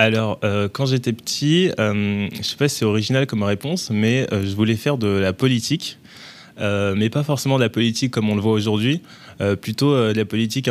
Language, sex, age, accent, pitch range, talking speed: French, male, 20-39, French, 105-125 Hz, 230 wpm